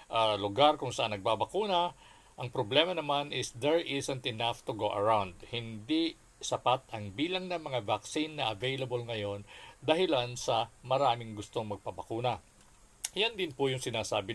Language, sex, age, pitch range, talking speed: Filipino, male, 50-69, 105-140 Hz, 145 wpm